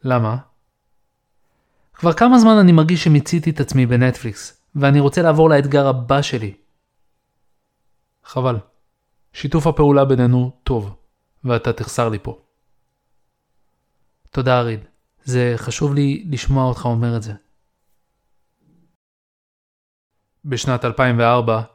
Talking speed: 100 wpm